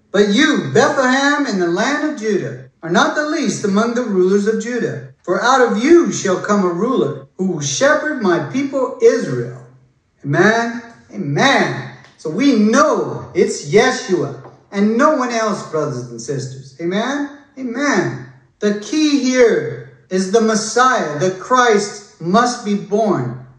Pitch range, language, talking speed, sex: 170-255 Hz, English, 150 wpm, male